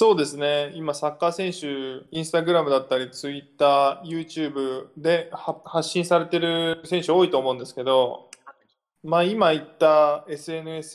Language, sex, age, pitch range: Japanese, male, 20-39, 140-180 Hz